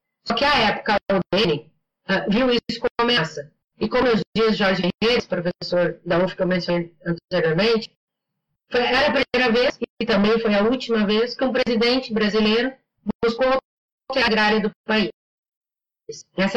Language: Portuguese